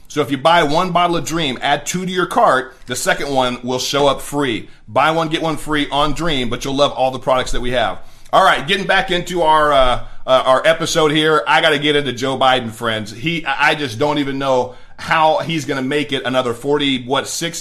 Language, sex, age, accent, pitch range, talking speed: English, male, 40-59, American, 145-180 Hz, 240 wpm